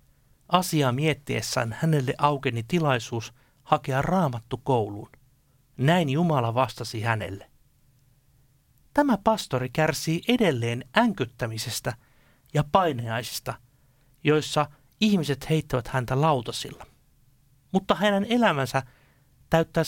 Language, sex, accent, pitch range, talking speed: Finnish, male, native, 115-155 Hz, 85 wpm